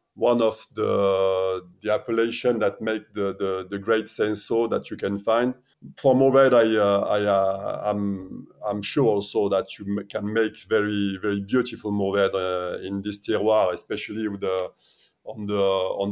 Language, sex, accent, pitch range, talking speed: English, male, French, 95-115 Hz, 170 wpm